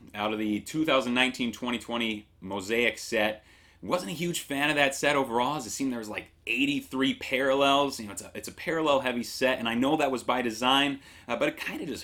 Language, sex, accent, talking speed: English, male, American, 220 wpm